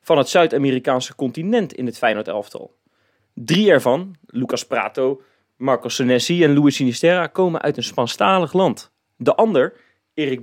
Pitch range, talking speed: 130-180 Hz, 140 wpm